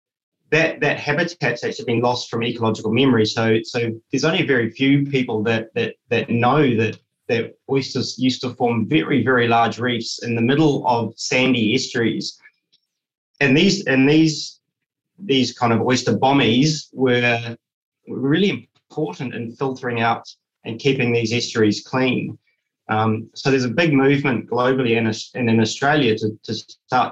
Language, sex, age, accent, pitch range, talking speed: English, male, 20-39, Australian, 115-135 Hz, 155 wpm